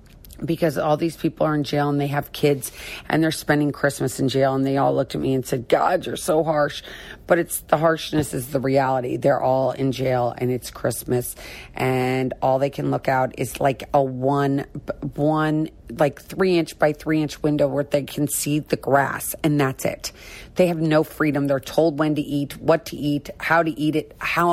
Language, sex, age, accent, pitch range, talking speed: English, female, 40-59, American, 140-185 Hz, 215 wpm